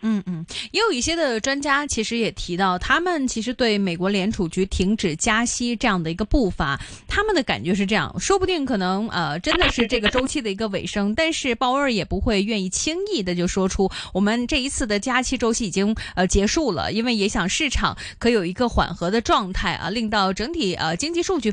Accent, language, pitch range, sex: native, Chinese, 190-255 Hz, female